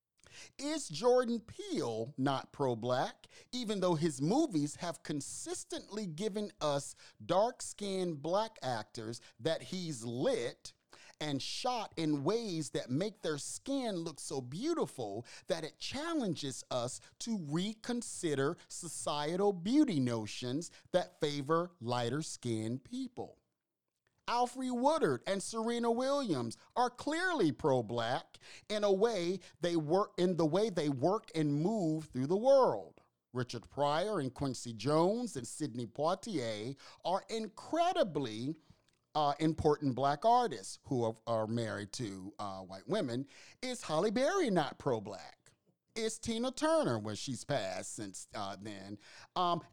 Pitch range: 135-225 Hz